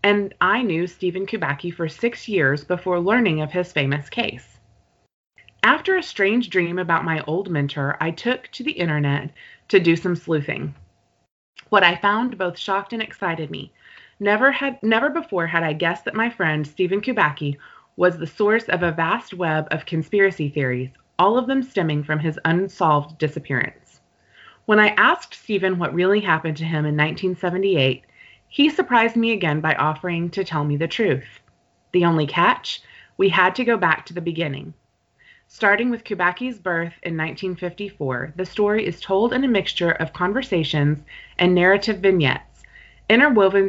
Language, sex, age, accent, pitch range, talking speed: English, female, 20-39, American, 155-205 Hz, 165 wpm